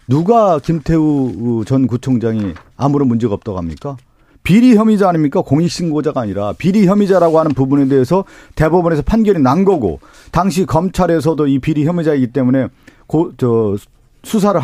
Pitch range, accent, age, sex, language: 125-170 Hz, native, 40-59, male, Korean